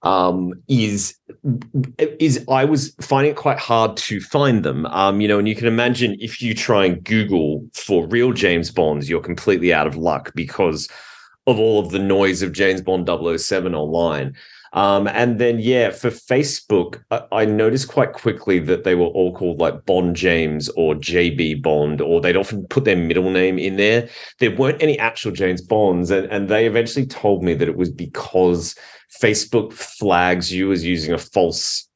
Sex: male